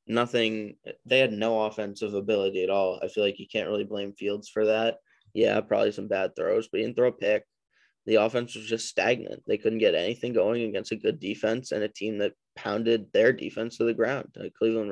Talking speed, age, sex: 220 wpm, 10-29, male